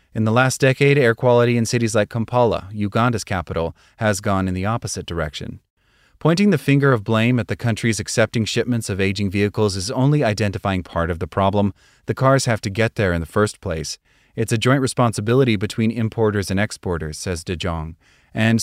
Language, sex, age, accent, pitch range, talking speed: English, male, 30-49, American, 100-120 Hz, 195 wpm